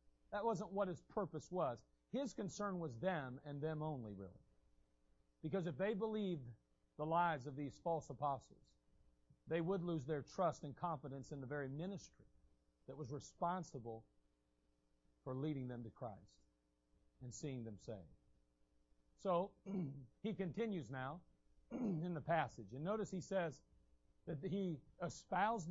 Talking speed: 140 wpm